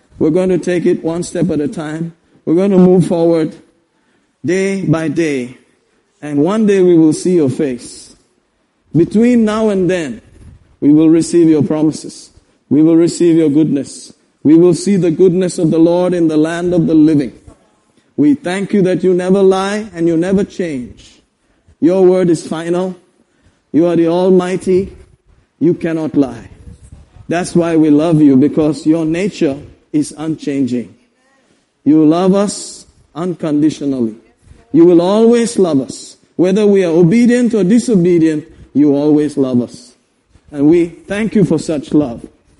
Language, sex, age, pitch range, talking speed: English, male, 50-69, 155-190 Hz, 160 wpm